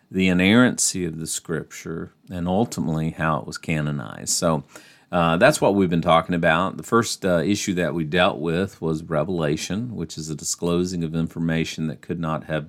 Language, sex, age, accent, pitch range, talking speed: English, male, 50-69, American, 80-95 Hz, 185 wpm